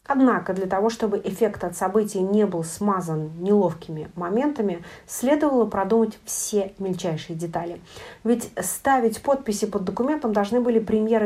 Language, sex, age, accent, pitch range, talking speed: Russian, female, 30-49, native, 175-215 Hz, 135 wpm